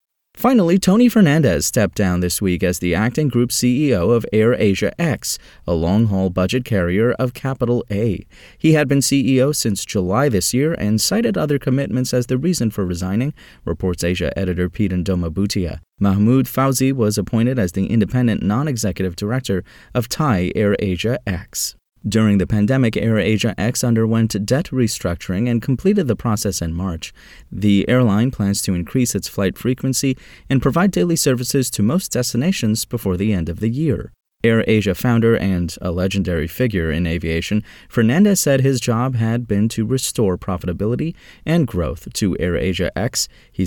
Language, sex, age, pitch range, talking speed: English, male, 30-49, 95-125 Hz, 160 wpm